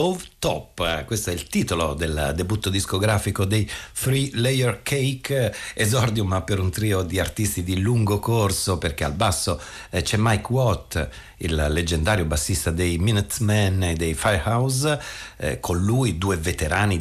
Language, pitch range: Italian, 85-110 Hz